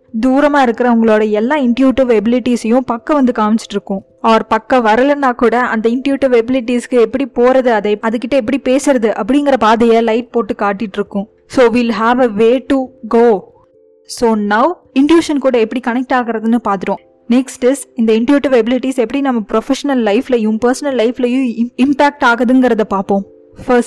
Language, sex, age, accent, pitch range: Tamil, female, 20-39, native, 220-260 Hz